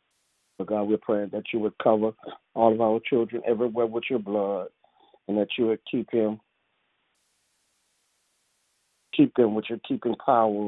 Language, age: English, 50-69